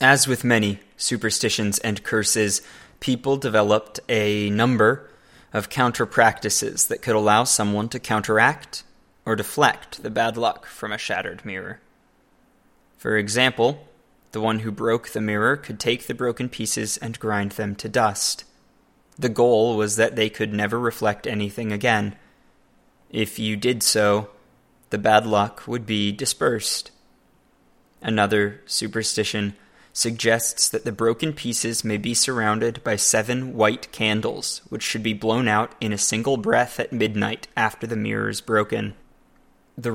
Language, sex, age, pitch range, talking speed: English, male, 20-39, 105-120 Hz, 145 wpm